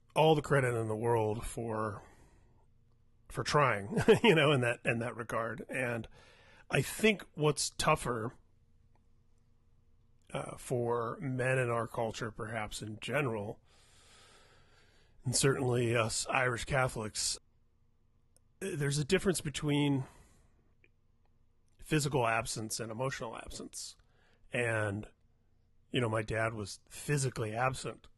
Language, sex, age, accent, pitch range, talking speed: English, male, 30-49, American, 110-125 Hz, 110 wpm